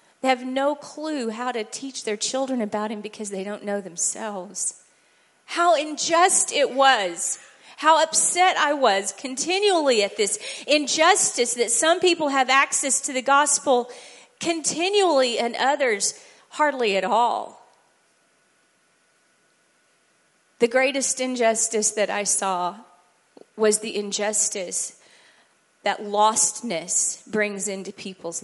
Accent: American